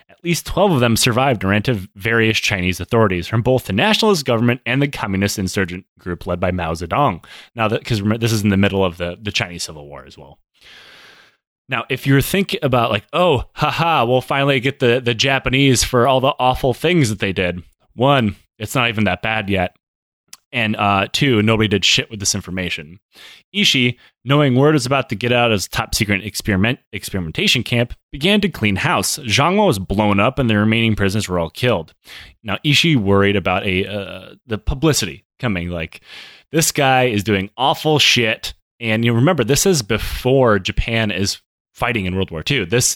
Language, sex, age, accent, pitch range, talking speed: English, male, 20-39, American, 95-130 Hz, 195 wpm